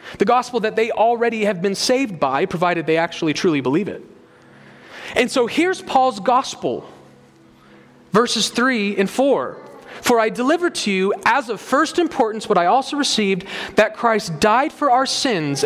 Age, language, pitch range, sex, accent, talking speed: 30-49, English, 180-240 Hz, male, American, 165 wpm